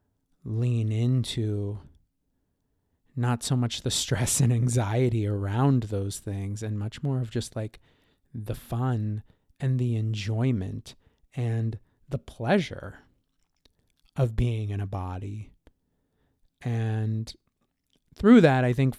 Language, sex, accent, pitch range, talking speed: English, male, American, 100-120 Hz, 115 wpm